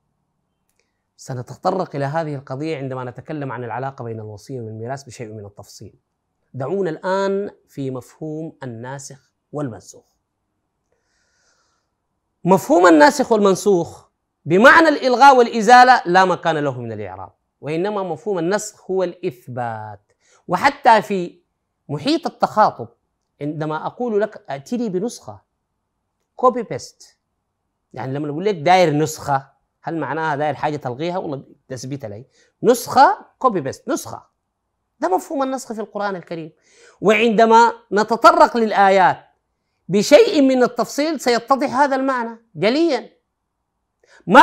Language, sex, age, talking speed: Arabic, male, 30-49, 110 wpm